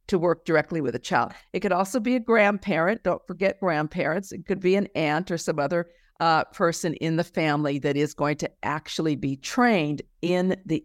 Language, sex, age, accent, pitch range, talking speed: English, female, 50-69, American, 140-175 Hz, 205 wpm